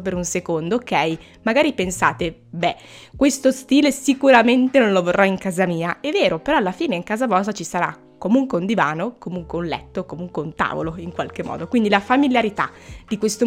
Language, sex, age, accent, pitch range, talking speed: Italian, female, 20-39, native, 180-230 Hz, 190 wpm